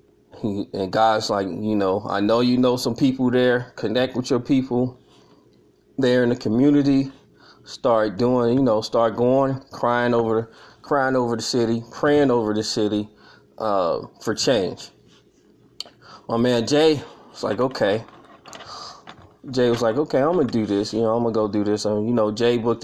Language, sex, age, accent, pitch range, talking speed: English, male, 20-39, American, 105-135 Hz, 175 wpm